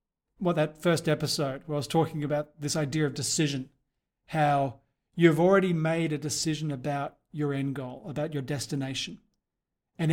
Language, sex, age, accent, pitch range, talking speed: English, male, 40-59, Australian, 140-170 Hz, 160 wpm